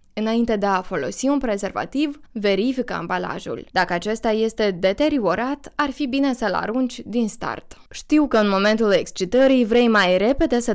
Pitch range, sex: 195-265 Hz, female